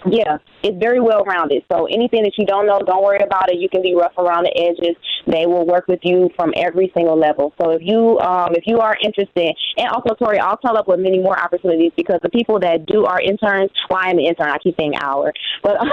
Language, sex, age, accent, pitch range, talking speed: English, female, 20-39, American, 170-205 Hz, 240 wpm